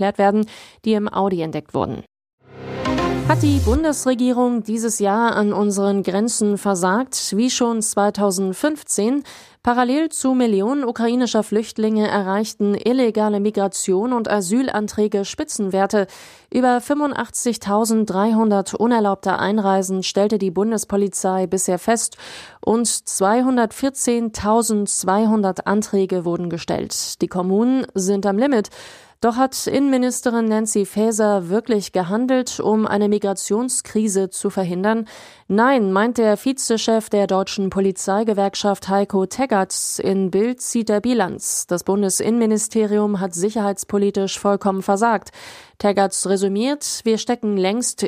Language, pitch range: German, 195-230 Hz